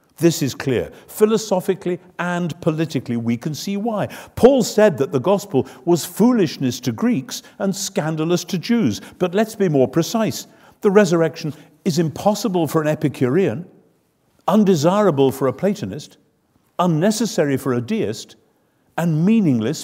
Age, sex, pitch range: 50-69, male, 105-175 Hz